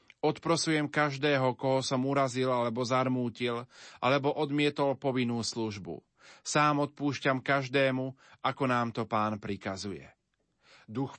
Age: 40-59